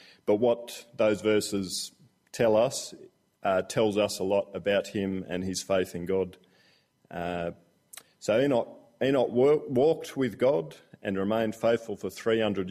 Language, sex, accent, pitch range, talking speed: English, male, Australian, 95-110 Hz, 150 wpm